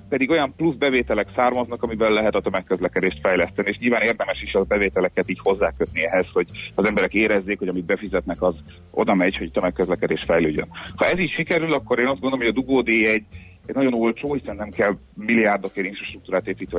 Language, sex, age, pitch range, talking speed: Hungarian, male, 30-49, 95-125 Hz, 190 wpm